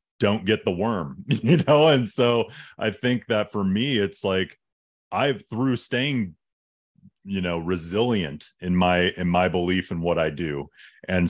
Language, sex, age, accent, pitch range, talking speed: English, male, 30-49, American, 90-110 Hz, 165 wpm